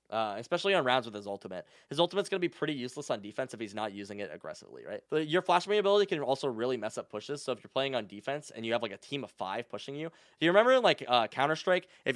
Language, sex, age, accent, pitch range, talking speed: English, male, 10-29, American, 110-155 Hz, 280 wpm